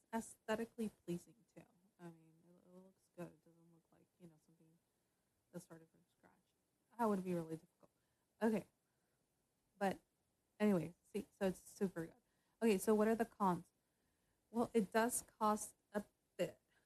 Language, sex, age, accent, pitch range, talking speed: English, female, 20-39, American, 175-220 Hz, 155 wpm